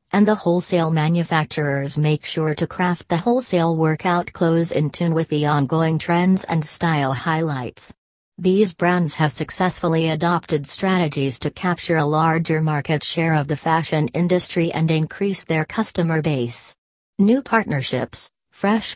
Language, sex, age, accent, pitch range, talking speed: English, female, 40-59, American, 150-175 Hz, 140 wpm